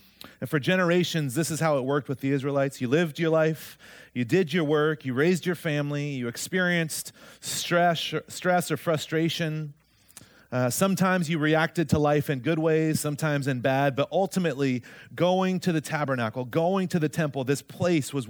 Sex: male